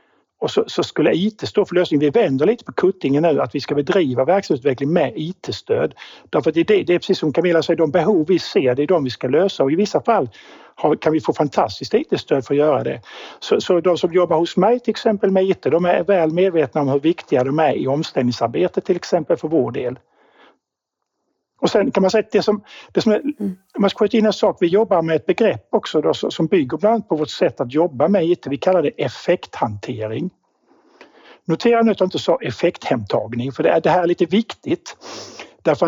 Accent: native